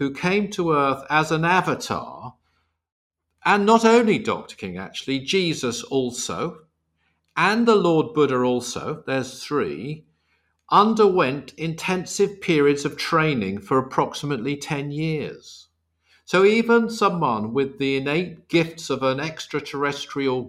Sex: male